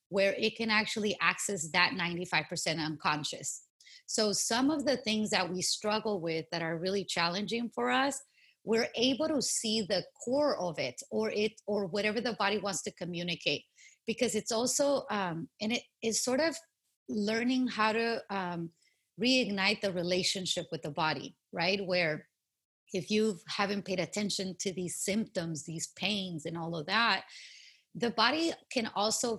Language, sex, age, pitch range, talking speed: English, female, 30-49, 175-220 Hz, 160 wpm